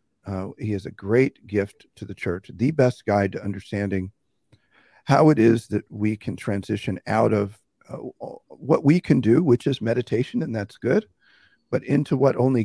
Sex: male